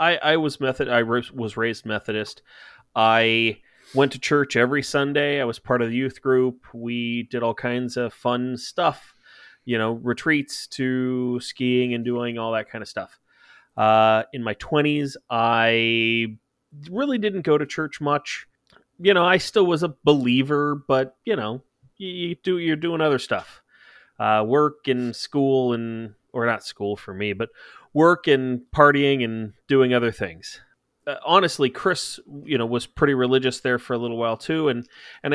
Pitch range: 115-145 Hz